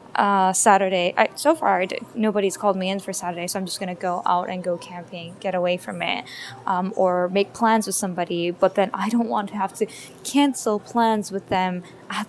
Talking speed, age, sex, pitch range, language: 205 wpm, 10-29, female, 195-240 Hz, English